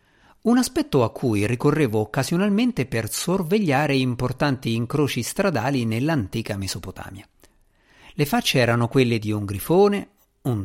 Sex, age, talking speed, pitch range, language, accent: male, 50-69, 120 wpm, 110-150 Hz, Italian, native